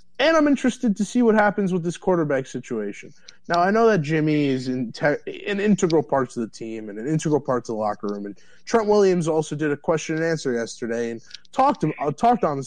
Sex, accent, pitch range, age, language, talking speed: male, American, 125-195 Hz, 20-39, English, 245 wpm